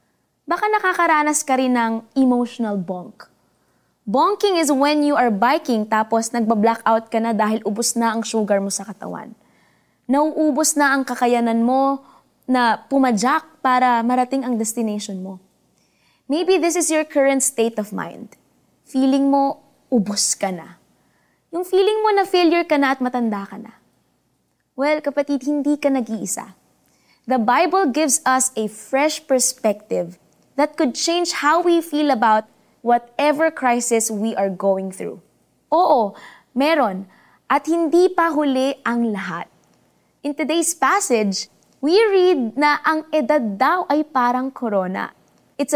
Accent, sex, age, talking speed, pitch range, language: native, female, 20-39, 140 wpm, 230-315 Hz, Filipino